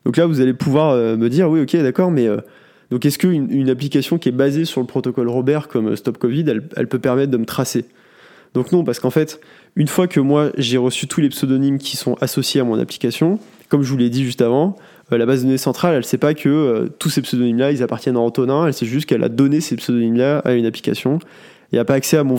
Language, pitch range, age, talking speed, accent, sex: French, 125-155 Hz, 20-39, 260 wpm, French, male